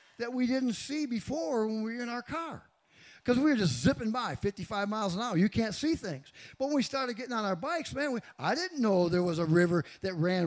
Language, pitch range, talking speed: English, 180-250 Hz, 245 wpm